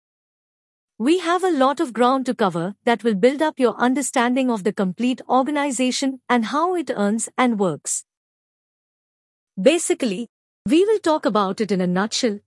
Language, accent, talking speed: English, Indian, 160 wpm